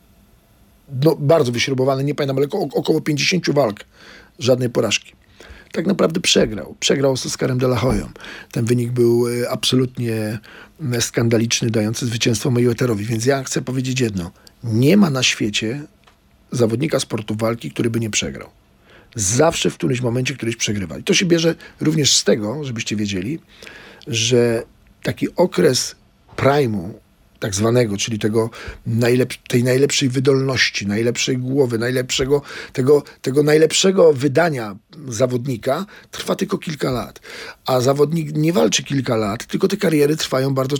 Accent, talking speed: native, 140 wpm